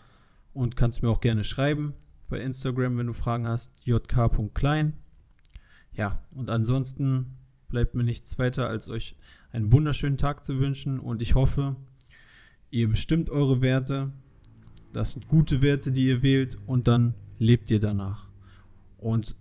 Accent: German